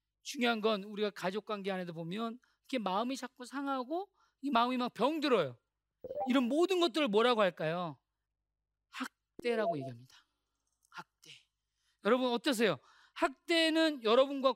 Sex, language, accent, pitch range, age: male, Korean, native, 160-250 Hz, 40-59